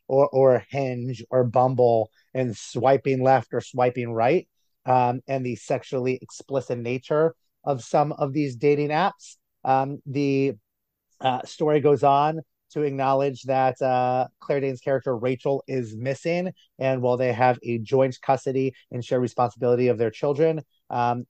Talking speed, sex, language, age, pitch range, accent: 150 wpm, male, English, 30-49, 125-145 Hz, American